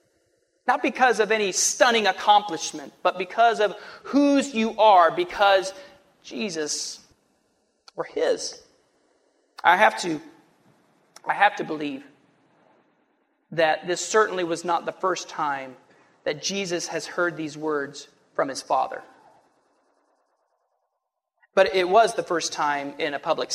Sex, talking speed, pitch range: male, 120 wpm, 160-220 Hz